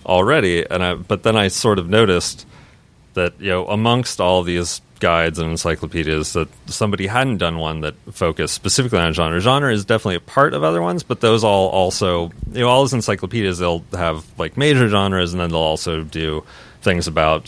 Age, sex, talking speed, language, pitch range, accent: 30-49, male, 195 wpm, English, 85-110 Hz, American